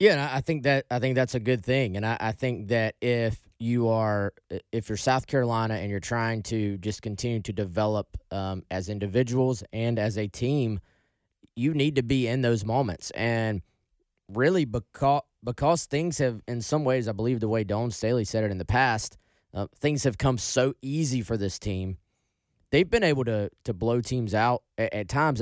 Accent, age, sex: American, 20-39, male